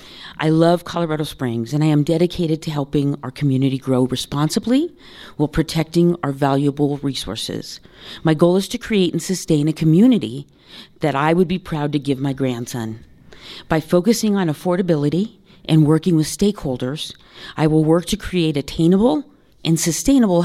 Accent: American